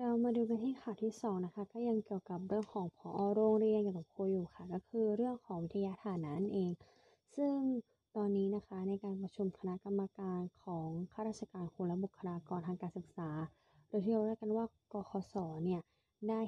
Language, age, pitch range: Thai, 20-39, 175-215 Hz